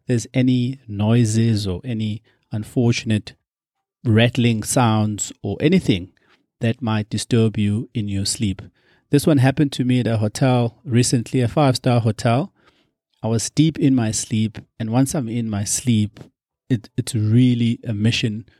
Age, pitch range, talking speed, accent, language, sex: 30-49, 110-130 Hz, 145 wpm, South African, English, male